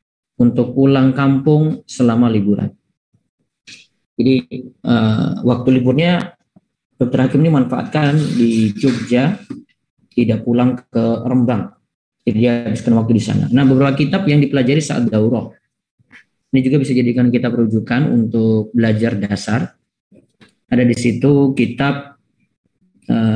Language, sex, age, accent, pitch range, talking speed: Indonesian, male, 20-39, native, 110-130 Hz, 120 wpm